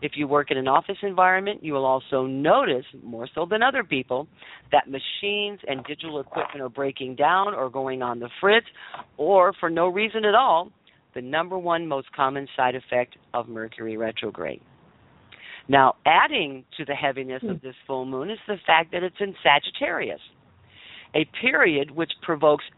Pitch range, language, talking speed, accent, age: 135-190 Hz, English, 170 wpm, American, 50-69